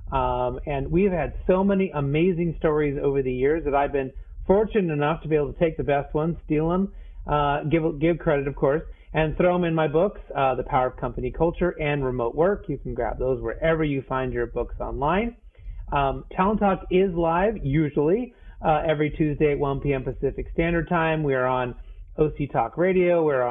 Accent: American